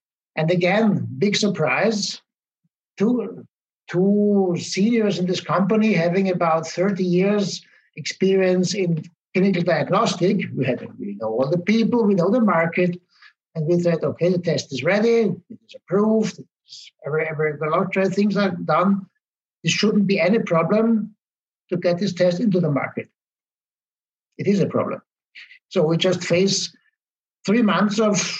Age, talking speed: 60-79, 145 wpm